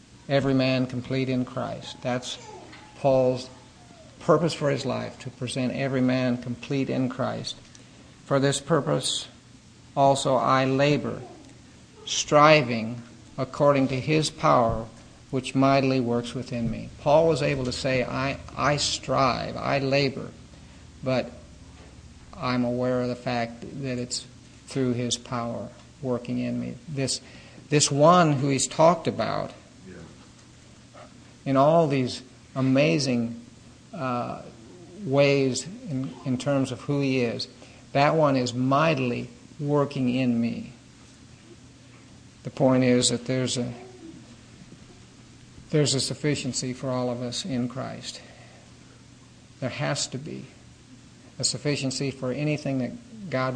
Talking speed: 125 wpm